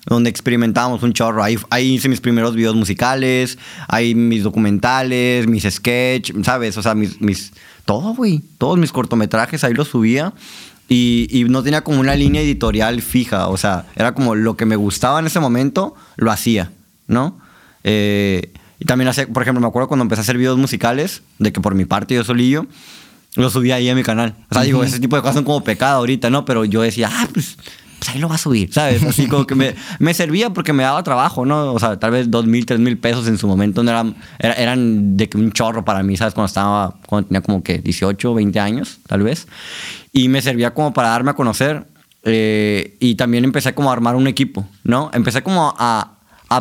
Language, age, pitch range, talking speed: Spanish, 20-39, 110-130 Hz, 215 wpm